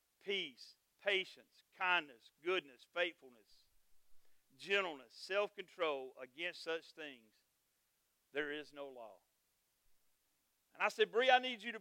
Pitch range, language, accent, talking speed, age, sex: 160-215 Hz, English, American, 110 wpm, 50-69, male